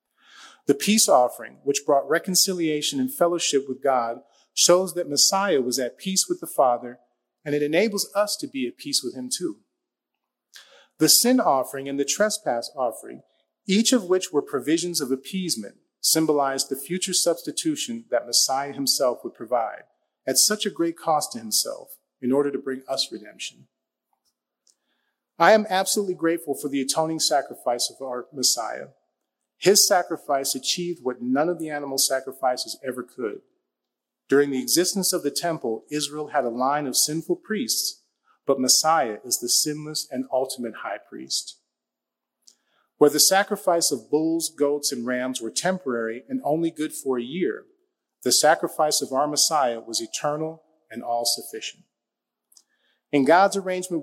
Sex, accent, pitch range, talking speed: male, American, 130-180 Hz, 155 wpm